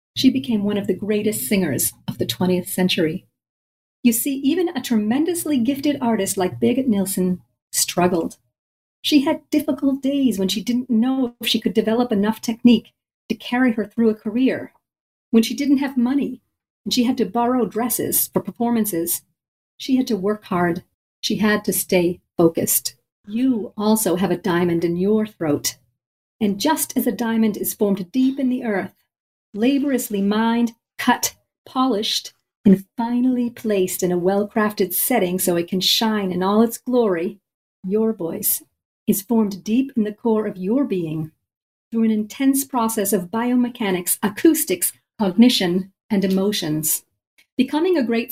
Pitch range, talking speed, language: 195-250 Hz, 160 wpm, English